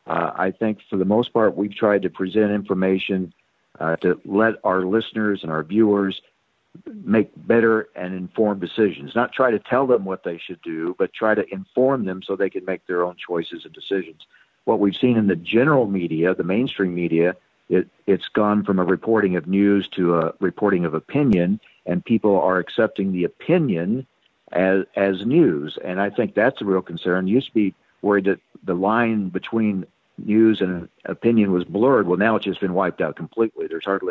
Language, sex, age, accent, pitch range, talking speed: English, male, 50-69, American, 90-110 Hz, 195 wpm